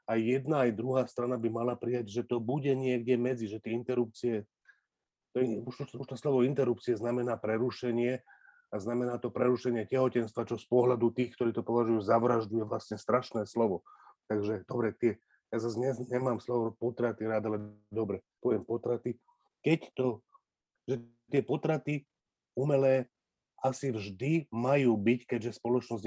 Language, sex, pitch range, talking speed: Slovak, male, 110-125 Hz, 155 wpm